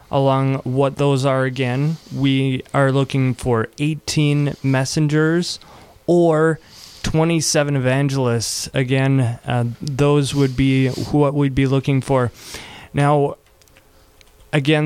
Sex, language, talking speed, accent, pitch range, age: male, English, 105 wpm, American, 135-155 Hz, 20-39